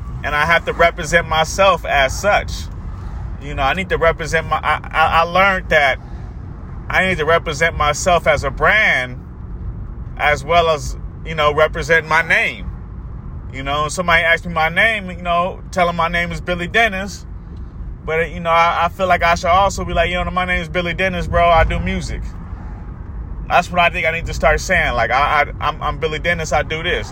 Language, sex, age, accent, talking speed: English, male, 30-49, American, 210 wpm